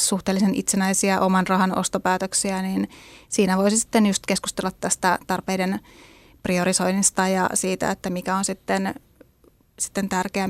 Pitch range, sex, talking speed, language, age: 185-195 Hz, female, 125 wpm, Finnish, 30-49